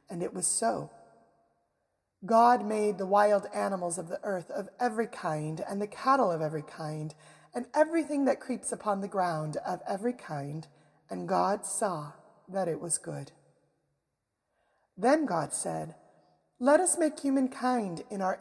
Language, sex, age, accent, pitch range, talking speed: English, female, 30-49, American, 165-235 Hz, 155 wpm